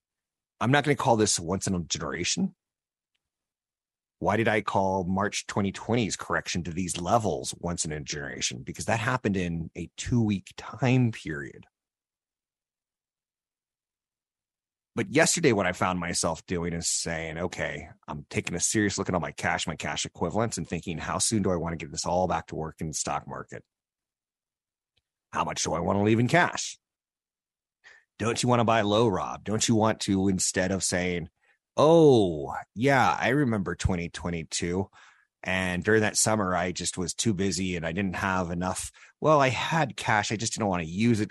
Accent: American